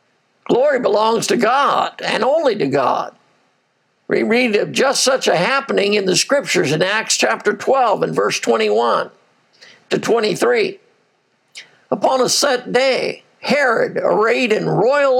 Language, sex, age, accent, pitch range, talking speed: English, male, 60-79, American, 225-290 Hz, 140 wpm